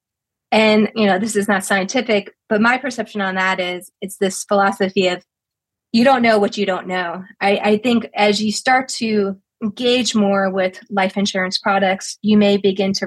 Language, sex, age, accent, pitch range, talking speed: English, female, 20-39, American, 195-245 Hz, 190 wpm